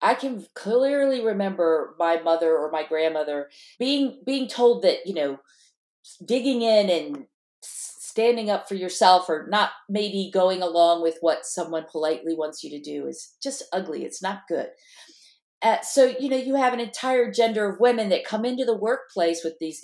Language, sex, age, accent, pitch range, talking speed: English, female, 40-59, American, 165-245 Hz, 180 wpm